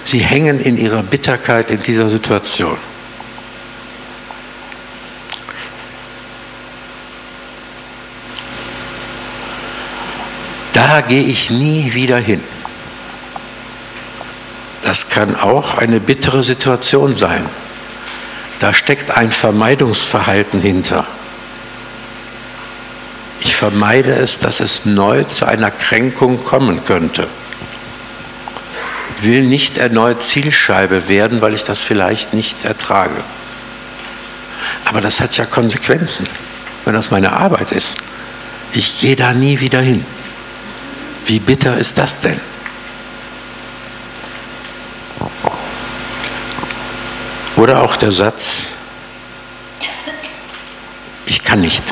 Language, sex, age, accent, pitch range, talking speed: English, male, 60-79, German, 105-130 Hz, 90 wpm